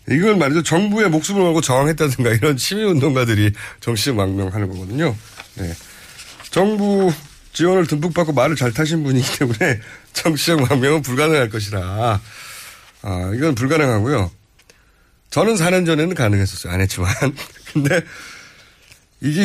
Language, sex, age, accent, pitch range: Korean, male, 30-49, native, 105-170 Hz